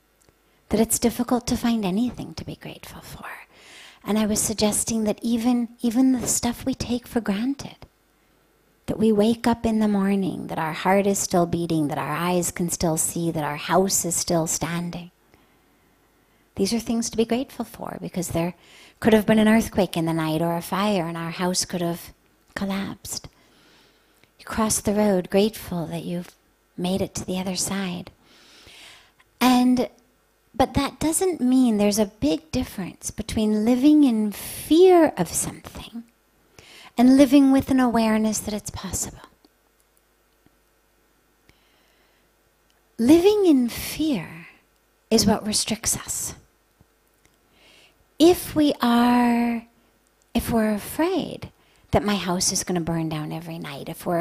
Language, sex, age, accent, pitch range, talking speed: English, female, 50-69, American, 180-245 Hz, 150 wpm